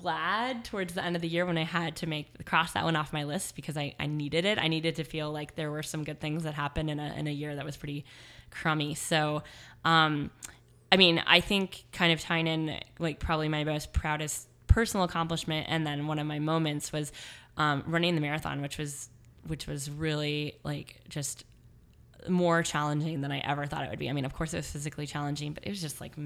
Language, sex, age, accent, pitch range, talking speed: English, female, 10-29, American, 145-160 Hz, 230 wpm